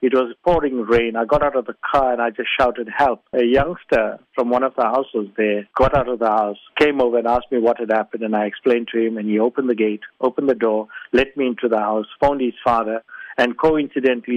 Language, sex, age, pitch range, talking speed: English, male, 50-69, 110-125 Hz, 245 wpm